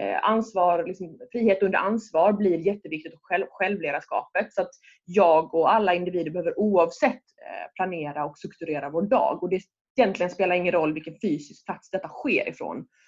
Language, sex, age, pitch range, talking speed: Swedish, female, 20-39, 165-205 Hz, 160 wpm